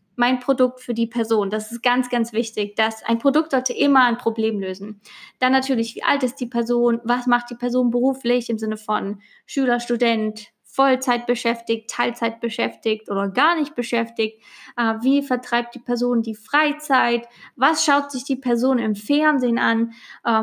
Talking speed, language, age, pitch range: 165 wpm, German, 20-39, 225-255 Hz